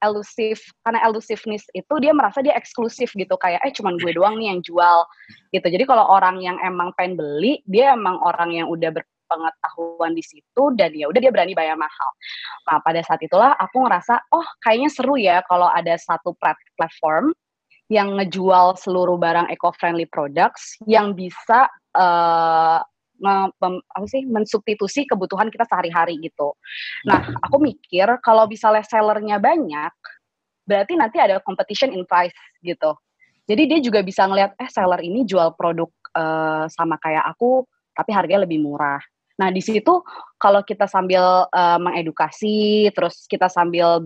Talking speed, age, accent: 155 wpm, 20-39, native